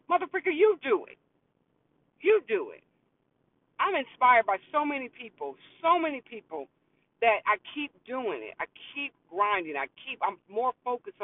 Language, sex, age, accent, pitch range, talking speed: English, female, 40-59, American, 225-330 Hz, 155 wpm